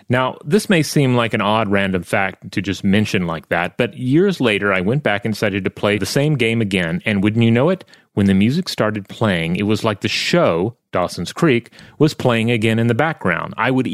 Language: English